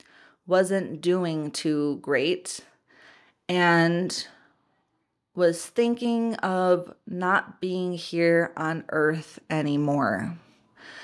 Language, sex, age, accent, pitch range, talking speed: English, female, 30-49, American, 165-185 Hz, 75 wpm